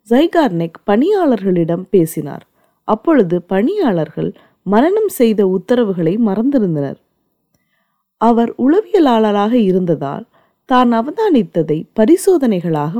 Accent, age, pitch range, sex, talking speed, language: native, 20-39, 175-255 Hz, female, 70 wpm, Tamil